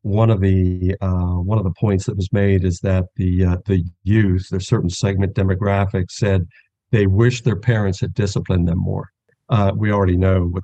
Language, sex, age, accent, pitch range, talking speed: English, male, 50-69, American, 95-130 Hz, 195 wpm